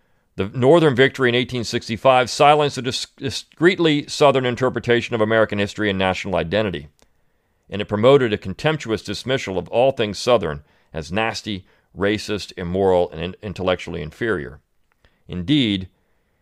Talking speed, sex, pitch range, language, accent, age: 125 wpm, male, 95-125 Hz, English, American, 40-59